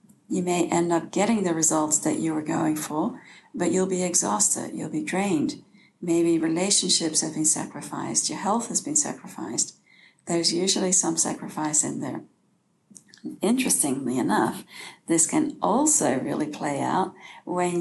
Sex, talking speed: female, 150 wpm